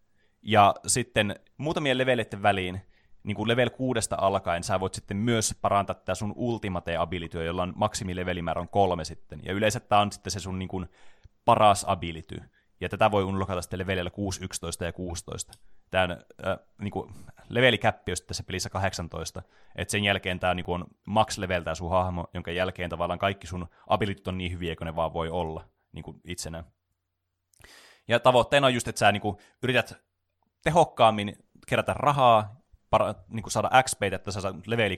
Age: 20-39